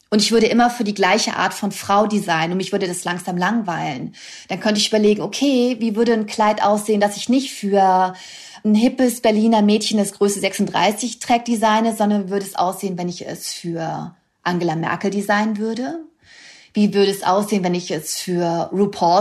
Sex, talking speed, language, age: female, 190 wpm, German, 30-49